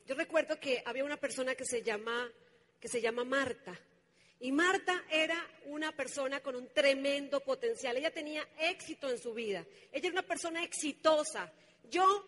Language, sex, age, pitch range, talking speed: Spanish, female, 40-59, 250-315 Hz, 155 wpm